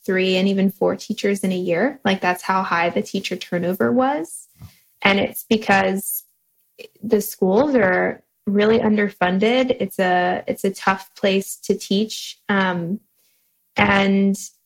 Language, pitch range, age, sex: English, 195-235 Hz, 10-29, female